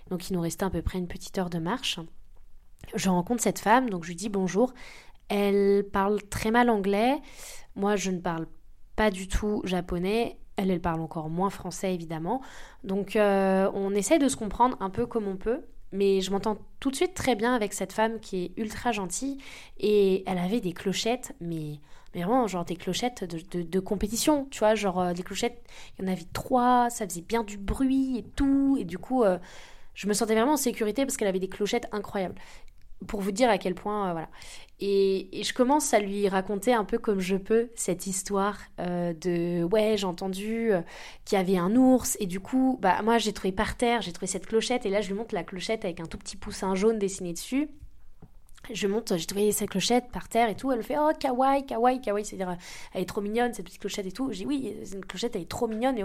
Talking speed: 230 wpm